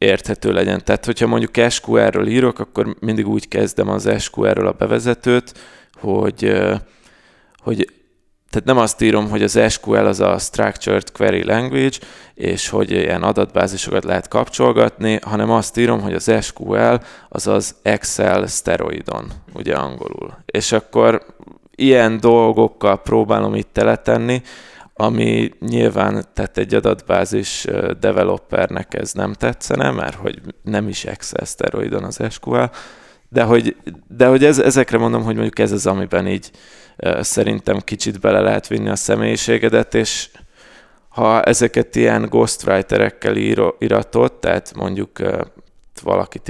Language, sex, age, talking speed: Hungarian, male, 20-39, 125 wpm